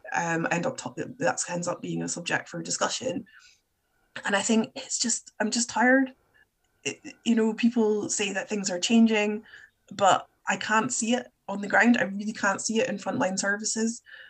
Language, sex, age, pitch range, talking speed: English, female, 20-39, 180-245 Hz, 180 wpm